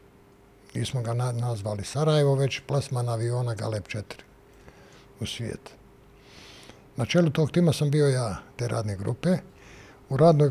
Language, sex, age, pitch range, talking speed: Croatian, male, 60-79, 110-145 Hz, 135 wpm